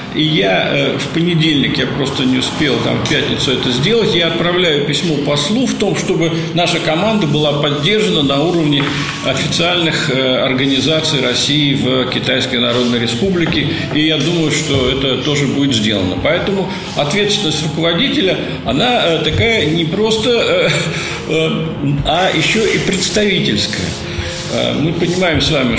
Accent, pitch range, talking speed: native, 135-175 Hz, 145 wpm